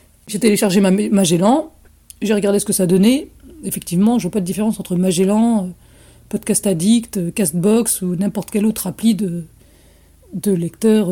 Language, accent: French, French